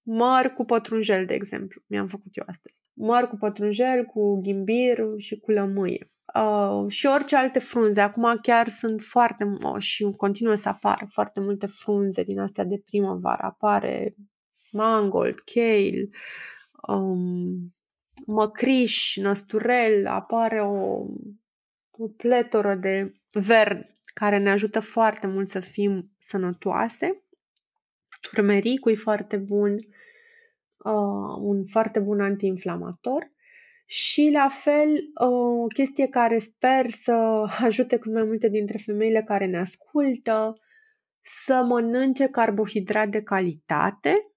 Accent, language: native, Romanian